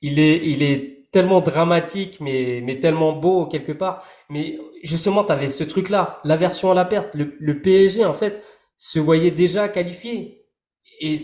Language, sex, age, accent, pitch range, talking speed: French, male, 20-39, French, 150-190 Hz, 175 wpm